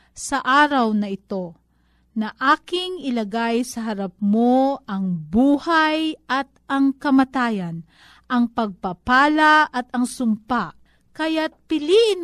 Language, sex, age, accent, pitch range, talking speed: Filipino, female, 40-59, native, 195-265 Hz, 110 wpm